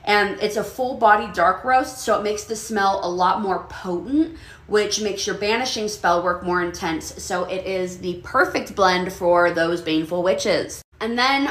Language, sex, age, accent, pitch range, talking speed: English, female, 20-39, American, 195-250 Hz, 180 wpm